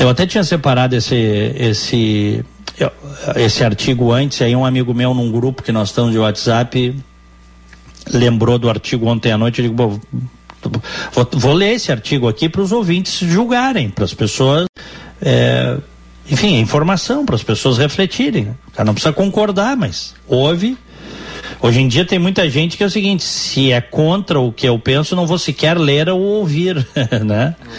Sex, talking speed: male, 170 wpm